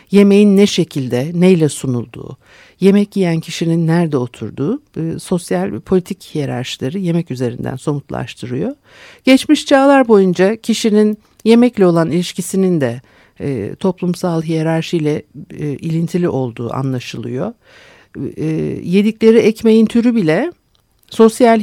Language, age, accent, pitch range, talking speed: Turkish, 60-79, native, 140-205 Hz, 95 wpm